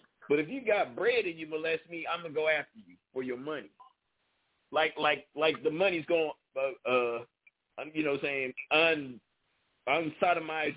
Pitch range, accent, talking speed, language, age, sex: 145-240 Hz, American, 185 wpm, English, 50-69, male